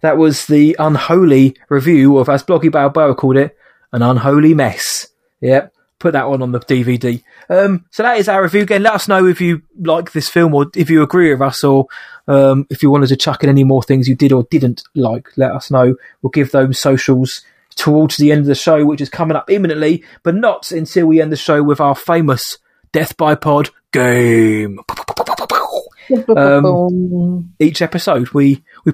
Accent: British